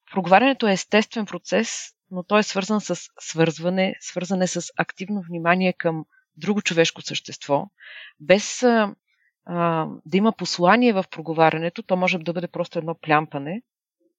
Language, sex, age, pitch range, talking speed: Bulgarian, female, 40-59, 170-210 Hz, 140 wpm